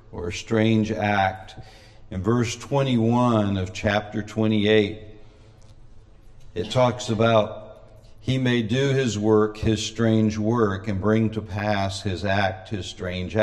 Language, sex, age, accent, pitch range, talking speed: English, male, 60-79, American, 105-110 Hz, 130 wpm